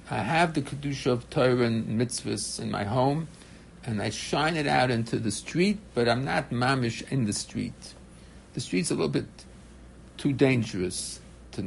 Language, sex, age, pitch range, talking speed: English, male, 60-79, 105-140 Hz, 175 wpm